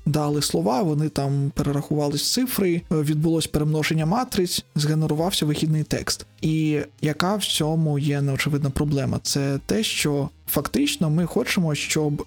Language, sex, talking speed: Ukrainian, male, 130 wpm